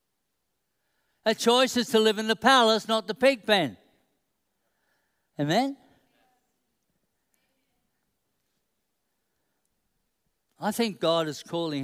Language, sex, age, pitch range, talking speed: English, male, 60-79, 180-240 Hz, 90 wpm